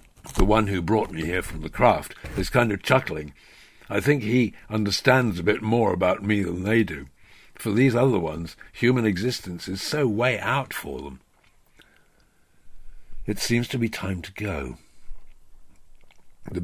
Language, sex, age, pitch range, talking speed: English, male, 60-79, 85-115 Hz, 160 wpm